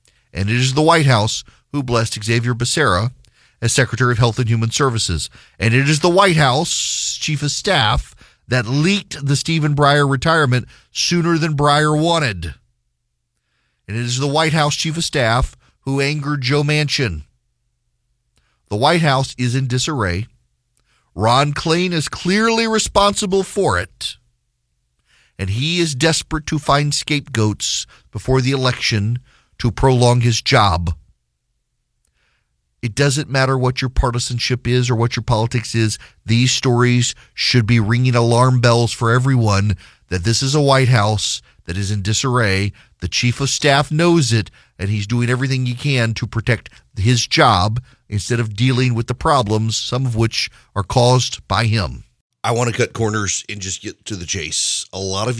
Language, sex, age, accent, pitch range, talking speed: English, male, 40-59, American, 95-135 Hz, 160 wpm